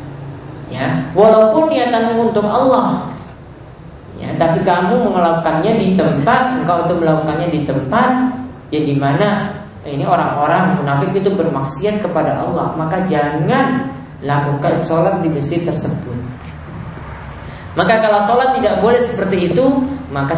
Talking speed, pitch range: 120 wpm, 140-195 Hz